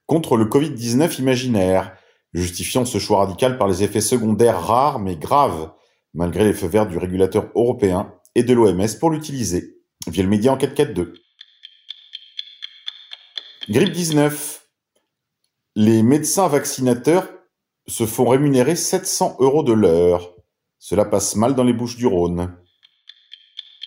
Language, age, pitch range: French, 40-59, 105-155 Hz